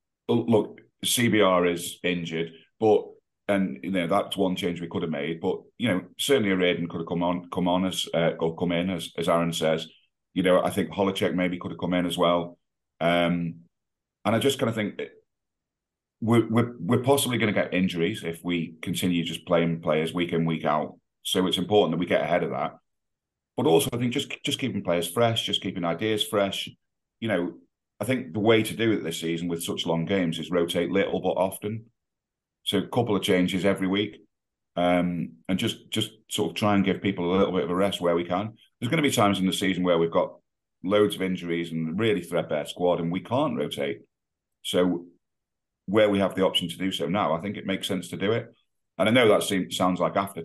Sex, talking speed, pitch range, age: male, 225 wpm, 85-105 Hz, 40-59